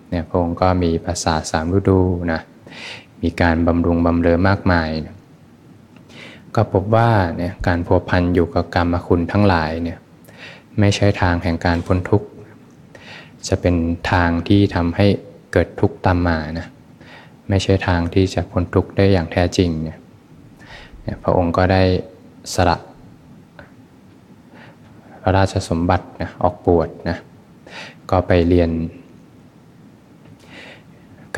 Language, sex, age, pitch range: Thai, male, 20-39, 85-95 Hz